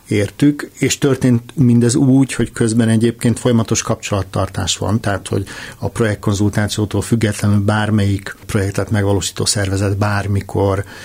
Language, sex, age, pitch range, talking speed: Hungarian, male, 50-69, 100-115 Hz, 110 wpm